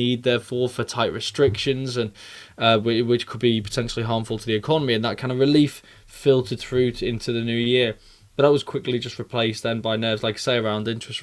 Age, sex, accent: 20-39, male, British